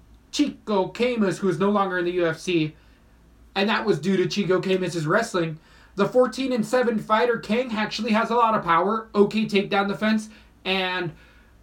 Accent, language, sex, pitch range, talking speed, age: American, English, male, 170-210 Hz, 180 wpm, 30-49